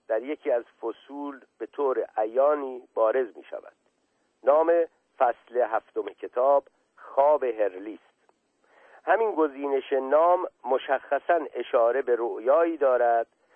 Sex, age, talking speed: male, 50-69, 110 wpm